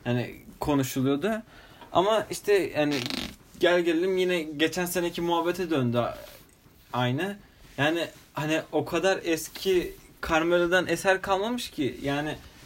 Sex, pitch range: male, 140-190 Hz